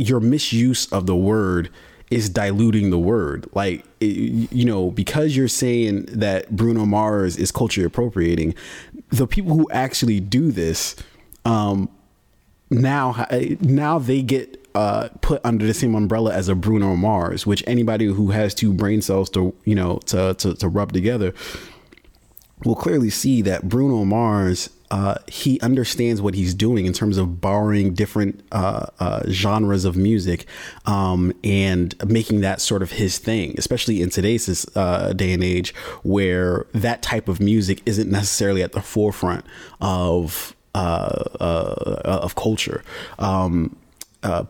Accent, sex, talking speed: American, male, 150 wpm